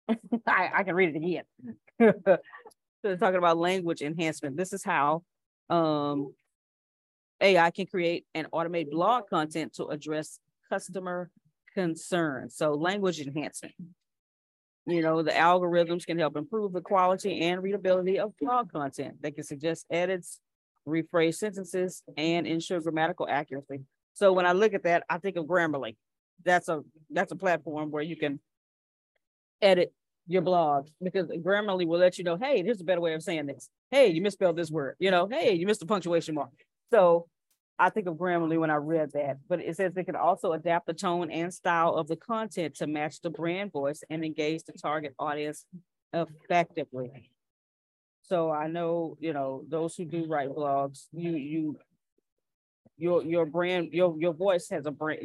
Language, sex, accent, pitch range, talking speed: English, female, American, 155-180 Hz, 170 wpm